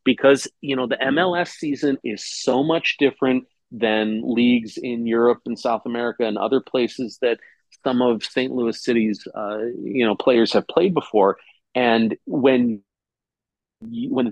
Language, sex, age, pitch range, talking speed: English, male, 40-59, 115-145 Hz, 150 wpm